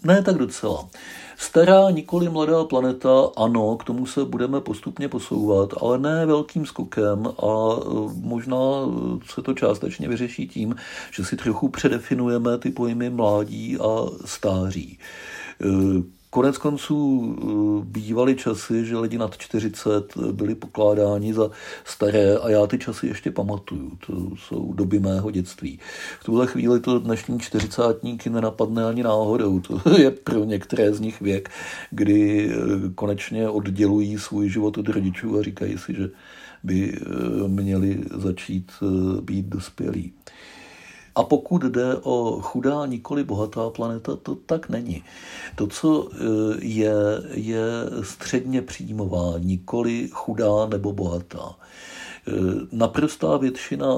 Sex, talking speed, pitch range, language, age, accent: male, 125 wpm, 100-120 Hz, Czech, 50-69, native